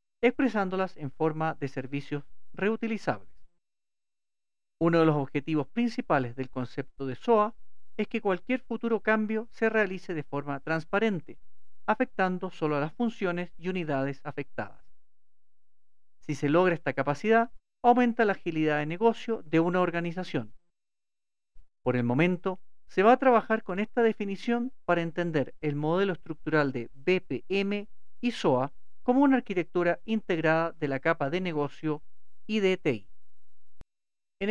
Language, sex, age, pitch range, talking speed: English, male, 50-69, 145-215 Hz, 135 wpm